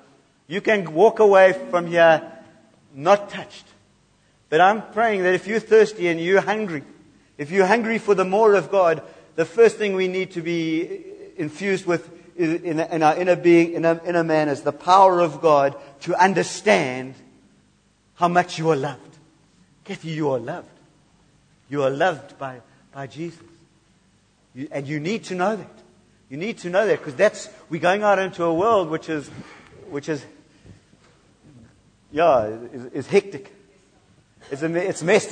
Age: 60-79